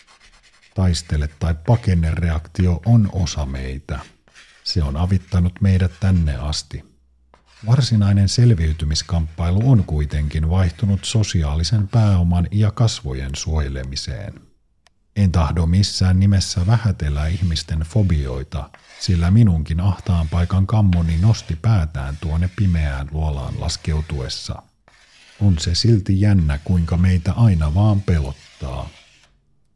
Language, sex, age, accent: Finnish, male, 50-69, native